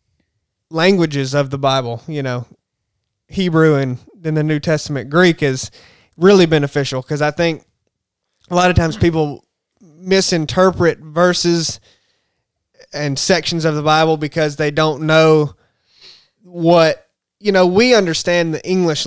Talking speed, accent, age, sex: 130 wpm, American, 20-39, male